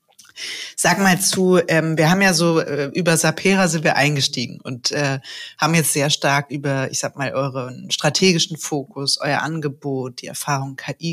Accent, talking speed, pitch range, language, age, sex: German, 155 wpm, 140-165 Hz, German, 30-49, female